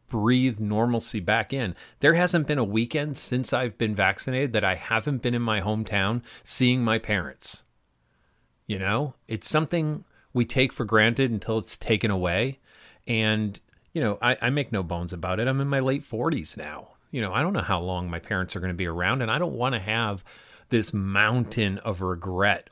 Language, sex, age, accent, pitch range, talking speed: English, male, 40-59, American, 95-125 Hz, 200 wpm